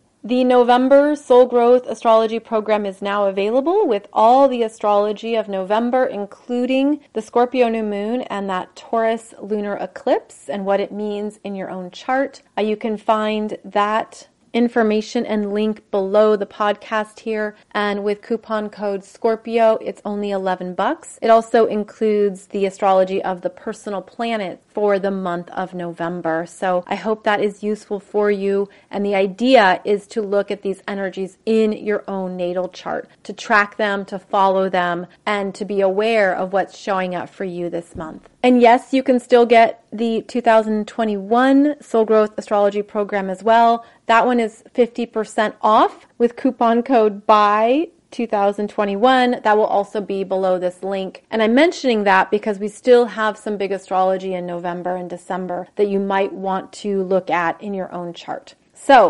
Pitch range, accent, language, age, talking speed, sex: 195-230 Hz, American, English, 30-49, 170 wpm, female